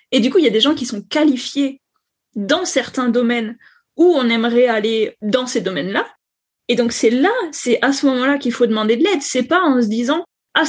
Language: French